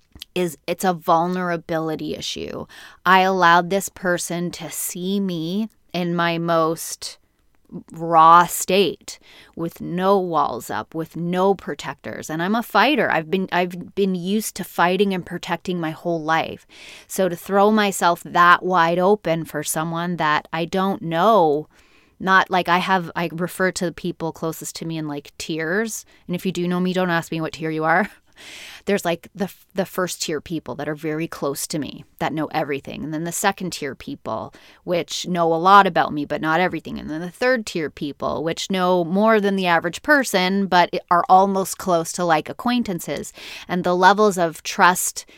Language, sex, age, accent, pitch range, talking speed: English, female, 20-39, American, 160-190 Hz, 180 wpm